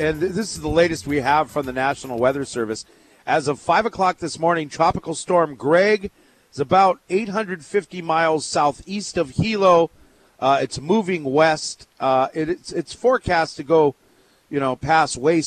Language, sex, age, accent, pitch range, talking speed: English, male, 40-59, American, 130-175 Hz, 165 wpm